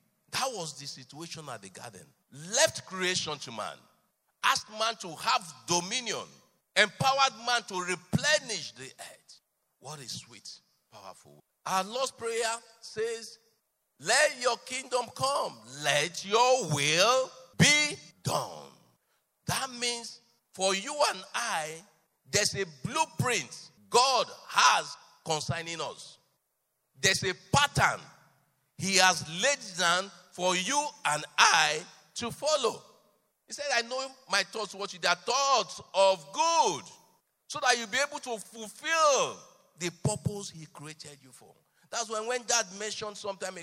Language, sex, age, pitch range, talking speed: English, male, 50-69, 170-250 Hz, 135 wpm